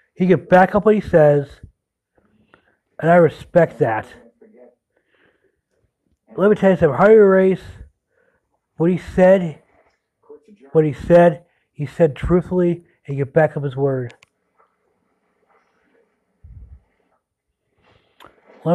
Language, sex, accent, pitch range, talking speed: English, male, American, 135-185 Hz, 110 wpm